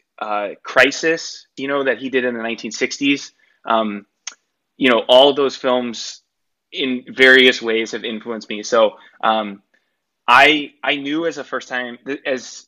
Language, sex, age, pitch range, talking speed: English, male, 20-39, 110-130 Hz, 150 wpm